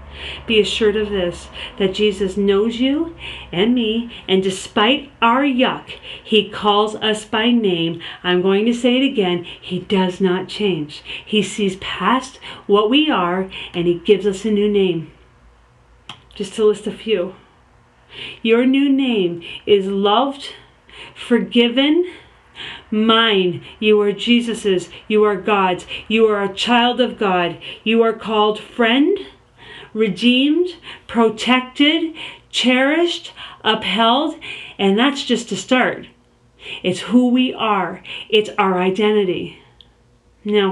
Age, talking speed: 40-59, 130 wpm